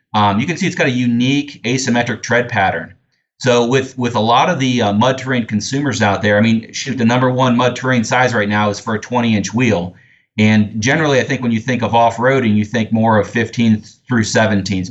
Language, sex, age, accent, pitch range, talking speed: English, male, 30-49, American, 105-125 Hz, 235 wpm